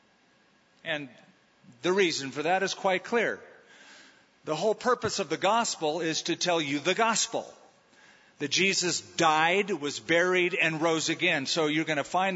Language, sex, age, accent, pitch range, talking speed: English, male, 40-59, American, 145-185 Hz, 160 wpm